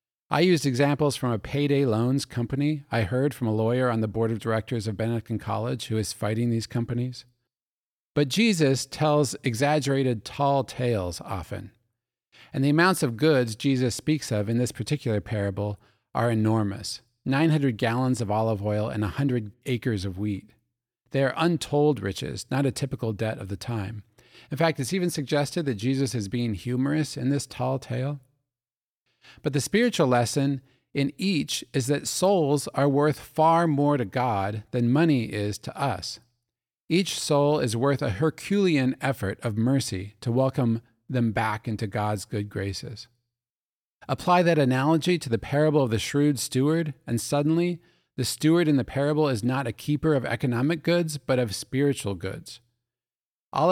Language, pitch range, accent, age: English, 115-145 Hz, American, 40-59